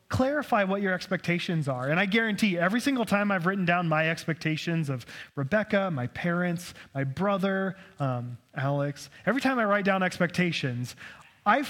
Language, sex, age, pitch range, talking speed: English, male, 20-39, 135-205 Hz, 160 wpm